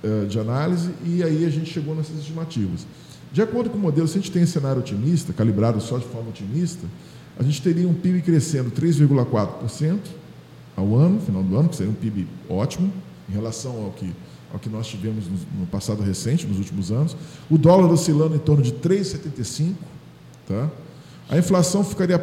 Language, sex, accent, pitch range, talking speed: Portuguese, male, Brazilian, 120-165 Hz, 180 wpm